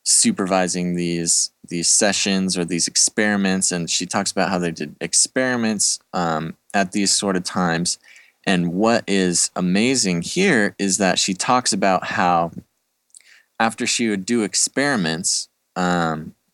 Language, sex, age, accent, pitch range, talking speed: English, male, 20-39, American, 85-100 Hz, 140 wpm